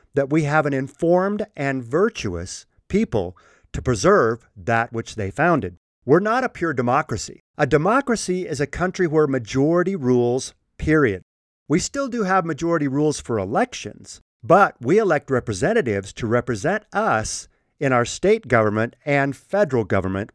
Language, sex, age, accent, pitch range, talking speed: English, male, 50-69, American, 115-180 Hz, 145 wpm